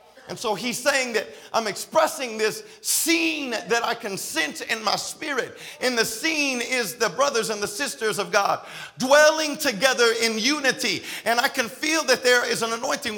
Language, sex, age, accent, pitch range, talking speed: English, male, 50-69, American, 215-270 Hz, 180 wpm